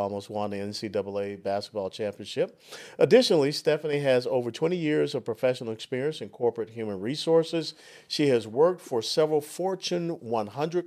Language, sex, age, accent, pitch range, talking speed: English, male, 50-69, American, 115-175 Hz, 145 wpm